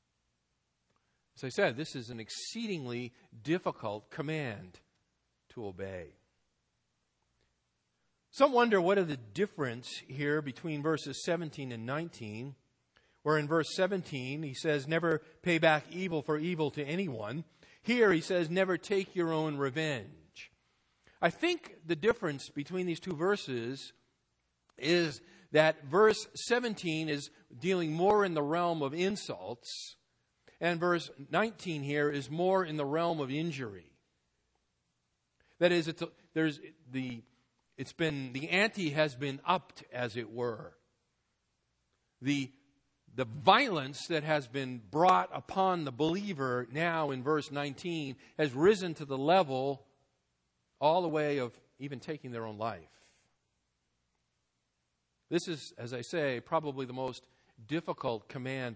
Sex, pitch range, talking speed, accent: male, 125-170 Hz, 135 wpm, American